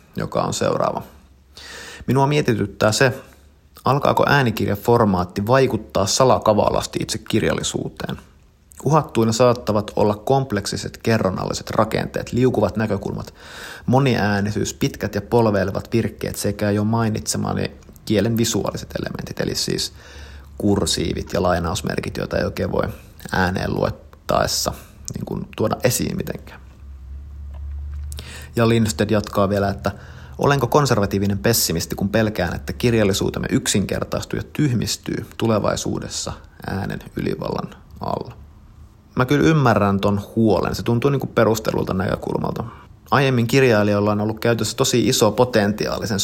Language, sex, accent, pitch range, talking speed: Finnish, male, native, 95-115 Hz, 110 wpm